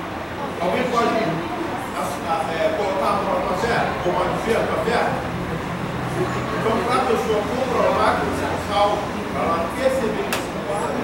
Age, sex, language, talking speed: 40-59, male, Portuguese, 145 wpm